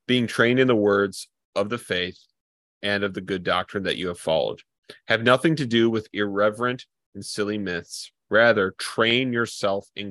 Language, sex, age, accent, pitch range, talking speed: English, male, 30-49, American, 95-115 Hz, 180 wpm